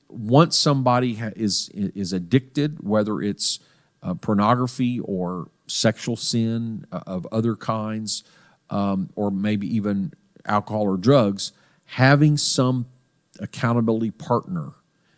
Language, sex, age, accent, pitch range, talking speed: English, male, 50-69, American, 105-135 Hz, 105 wpm